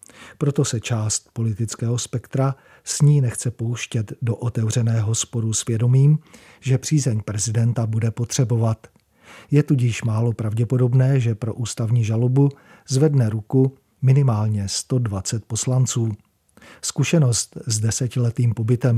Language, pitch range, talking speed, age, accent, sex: Czech, 115-130 Hz, 115 wpm, 40-59, native, male